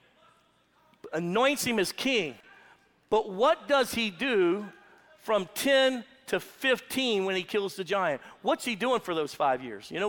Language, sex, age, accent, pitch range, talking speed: English, male, 50-69, American, 205-265 Hz, 160 wpm